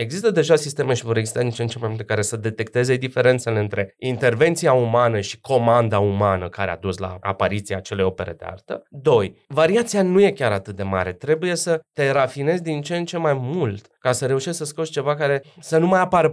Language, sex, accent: Romanian, male, native